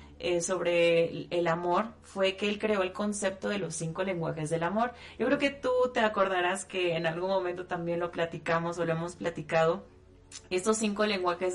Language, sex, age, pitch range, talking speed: Spanish, female, 30-49, 170-215 Hz, 190 wpm